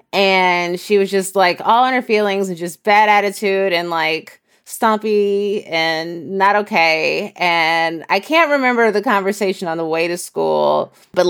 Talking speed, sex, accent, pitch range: 165 wpm, female, American, 180-220 Hz